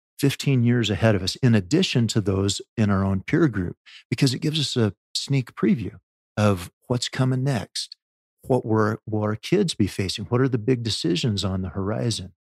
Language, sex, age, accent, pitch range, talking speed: English, male, 50-69, American, 100-120 Hz, 190 wpm